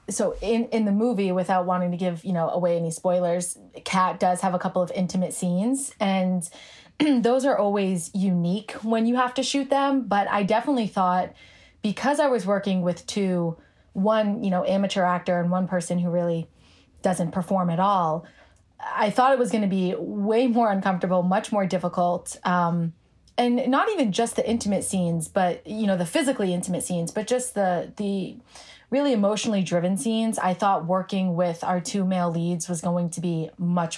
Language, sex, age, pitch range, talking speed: English, female, 20-39, 180-220 Hz, 185 wpm